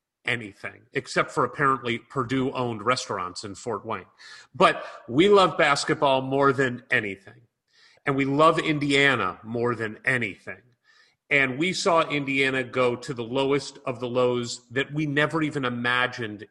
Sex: male